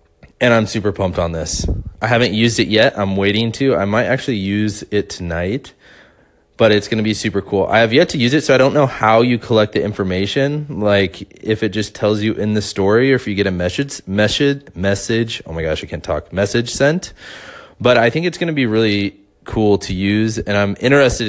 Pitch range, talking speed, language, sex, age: 95-110 Hz, 230 wpm, English, male, 20-39